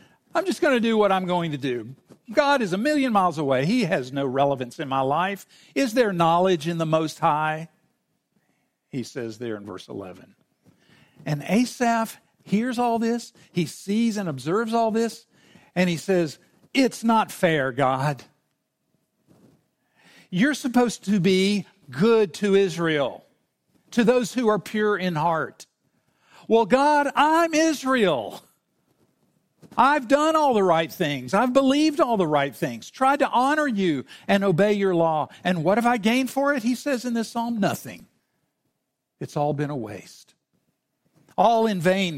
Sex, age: male, 50-69